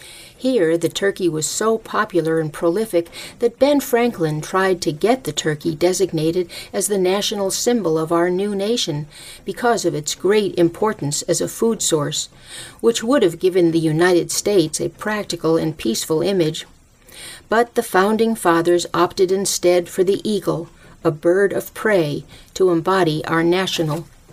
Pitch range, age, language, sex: 165-210 Hz, 50-69, English, female